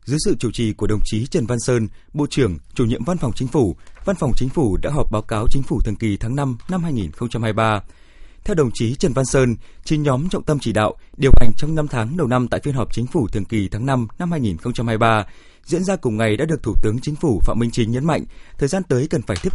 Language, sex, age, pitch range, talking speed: Vietnamese, male, 20-39, 115-155 Hz, 290 wpm